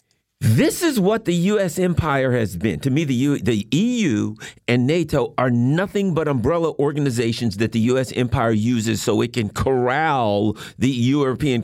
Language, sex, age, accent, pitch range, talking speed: English, male, 50-69, American, 115-155 Hz, 160 wpm